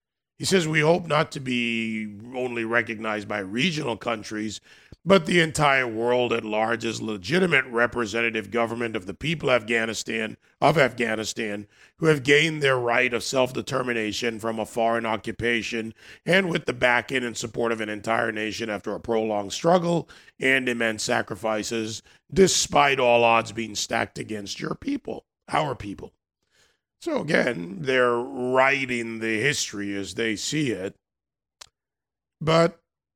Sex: male